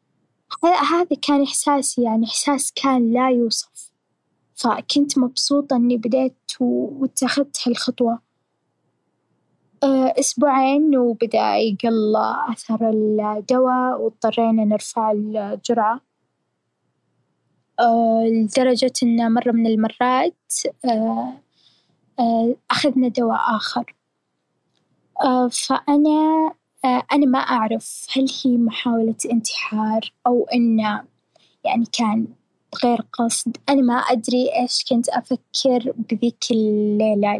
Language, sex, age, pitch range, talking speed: Arabic, female, 10-29, 220-255 Hz, 90 wpm